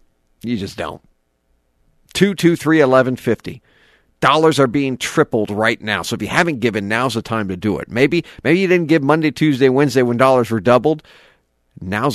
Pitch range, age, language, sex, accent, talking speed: 100-140 Hz, 50-69, English, male, American, 170 wpm